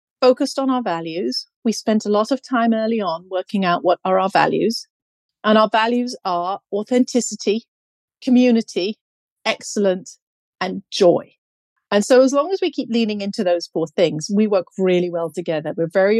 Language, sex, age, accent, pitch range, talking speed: English, female, 40-59, British, 175-235 Hz, 170 wpm